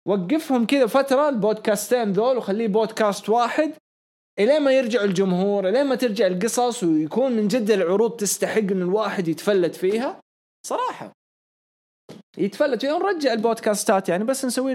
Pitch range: 195-275 Hz